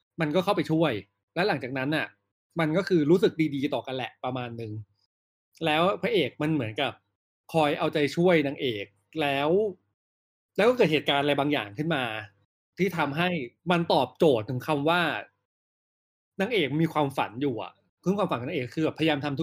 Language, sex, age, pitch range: Thai, male, 20-39, 125-170 Hz